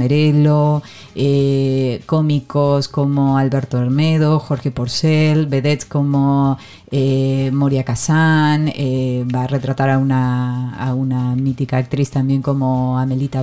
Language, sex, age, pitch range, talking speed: Spanish, female, 30-49, 130-155 Hz, 115 wpm